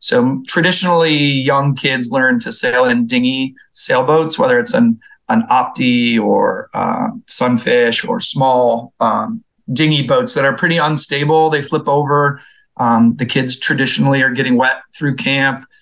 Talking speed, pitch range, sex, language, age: 150 wpm, 135-200 Hz, male, English, 30-49